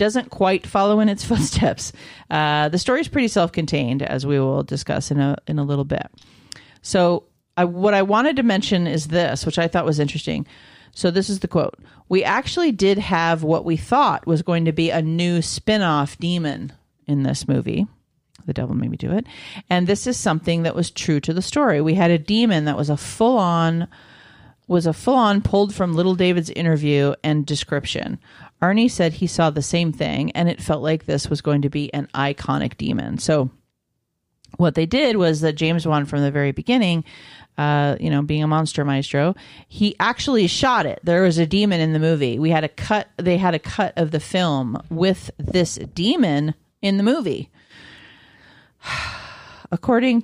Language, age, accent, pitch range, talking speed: English, 40-59, American, 150-195 Hz, 190 wpm